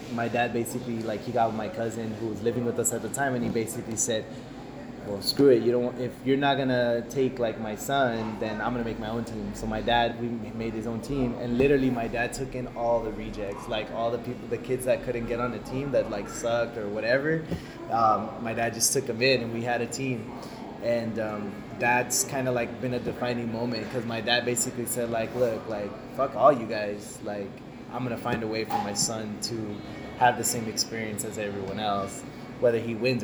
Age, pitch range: 20-39, 110-125 Hz